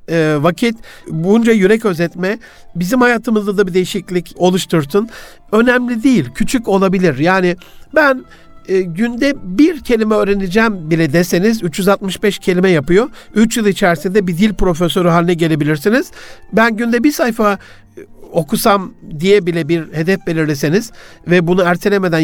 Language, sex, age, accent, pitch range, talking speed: Turkish, male, 60-79, native, 175-220 Hz, 125 wpm